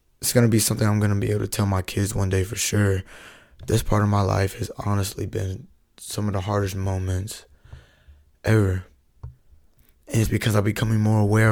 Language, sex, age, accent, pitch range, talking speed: English, male, 20-39, American, 95-110 Hz, 205 wpm